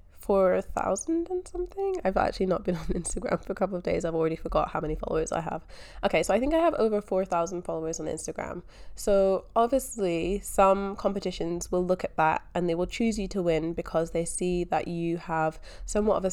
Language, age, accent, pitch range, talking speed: English, 10-29, British, 165-210 Hz, 215 wpm